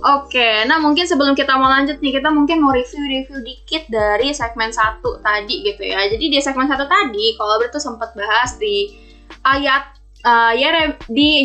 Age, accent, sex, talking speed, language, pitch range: 10-29, native, female, 180 wpm, Indonesian, 220-305 Hz